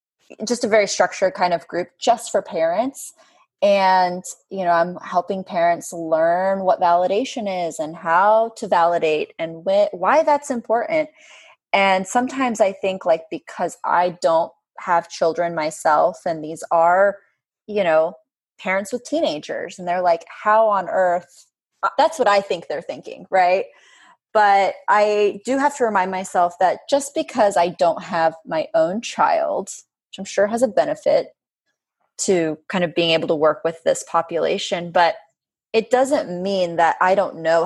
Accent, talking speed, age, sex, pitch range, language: American, 160 wpm, 20-39, female, 170-220 Hz, English